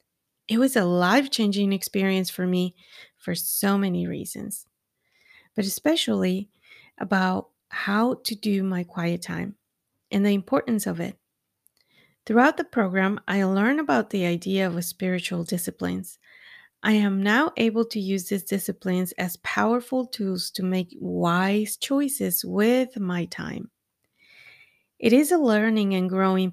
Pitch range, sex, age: 180-225 Hz, female, 30-49